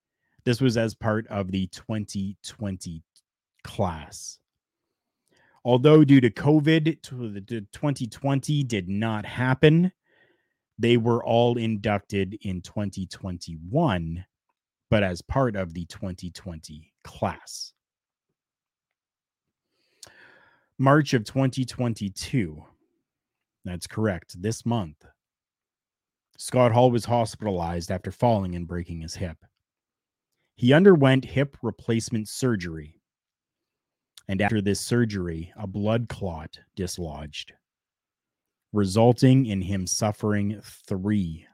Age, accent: 30-49, American